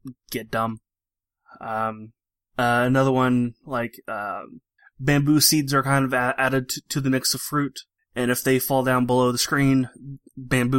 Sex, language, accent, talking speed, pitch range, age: male, English, American, 165 wpm, 115-140 Hz, 20-39